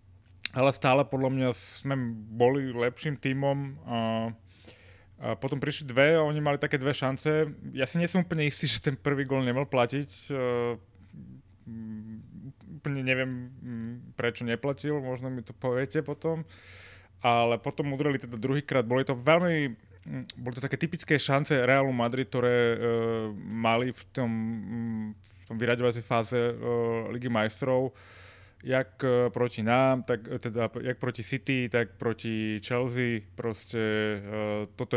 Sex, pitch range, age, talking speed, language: male, 110-130 Hz, 30-49, 130 wpm, Slovak